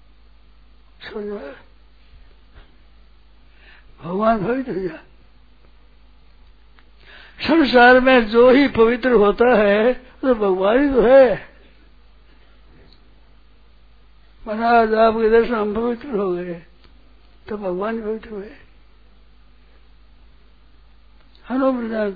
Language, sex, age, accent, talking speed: Hindi, male, 60-79, native, 70 wpm